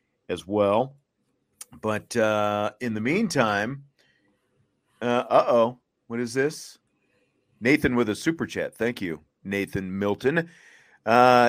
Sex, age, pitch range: male, 40-59, 105-145 Hz